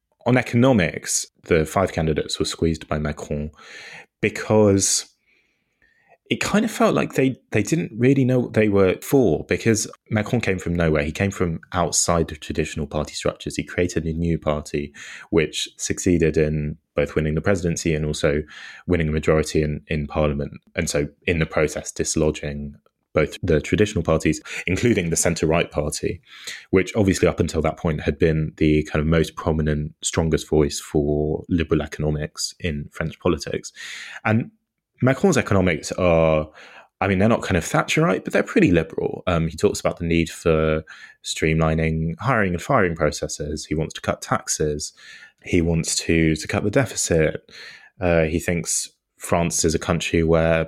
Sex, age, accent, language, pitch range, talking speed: male, 20-39, British, English, 75-95 Hz, 165 wpm